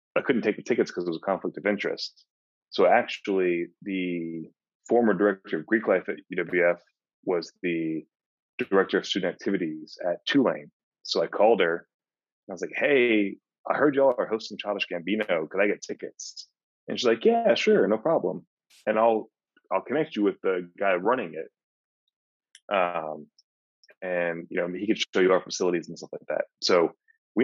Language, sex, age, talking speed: English, male, 30-49, 180 wpm